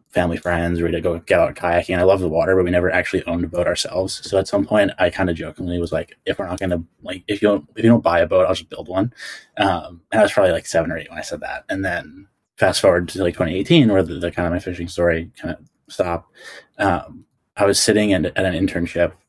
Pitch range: 85-100 Hz